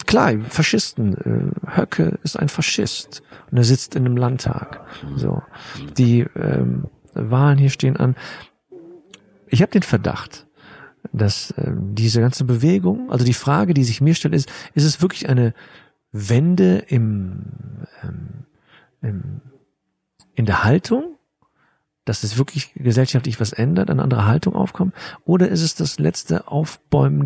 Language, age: German, 50-69